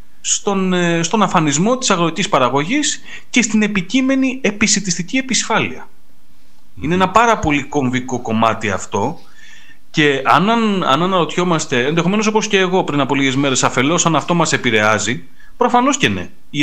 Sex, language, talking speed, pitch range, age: male, Greek, 140 wpm, 125-185 Hz, 30-49